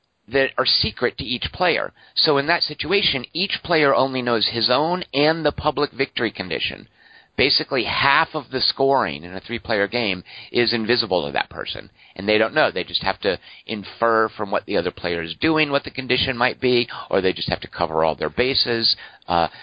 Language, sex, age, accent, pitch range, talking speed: English, male, 50-69, American, 115-145 Hz, 200 wpm